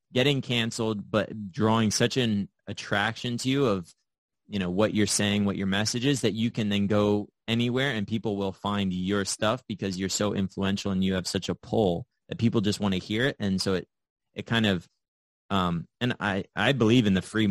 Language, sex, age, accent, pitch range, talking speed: English, male, 20-39, American, 95-105 Hz, 215 wpm